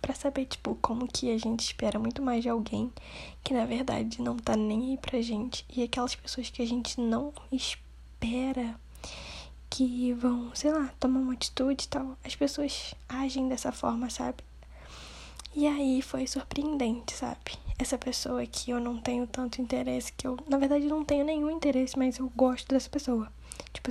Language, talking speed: Portuguese, 180 wpm